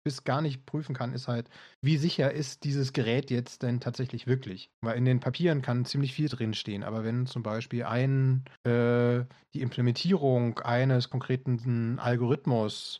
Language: German